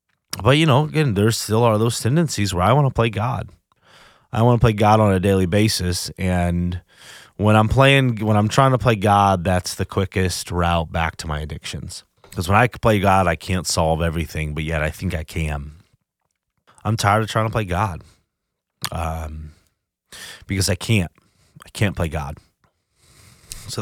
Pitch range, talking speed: 90-120 Hz, 185 wpm